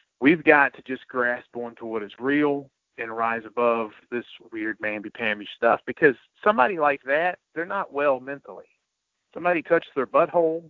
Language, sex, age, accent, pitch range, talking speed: English, male, 40-59, American, 120-145 Hz, 155 wpm